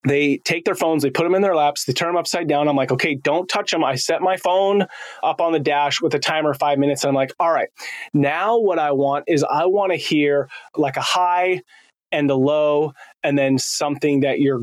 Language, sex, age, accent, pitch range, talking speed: English, male, 20-39, American, 140-175 Hz, 240 wpm